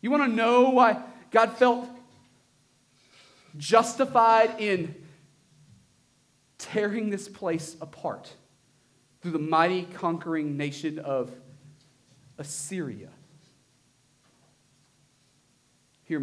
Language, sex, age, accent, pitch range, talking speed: English, male, 30-49, American, 135-170 Hz, 80 wpm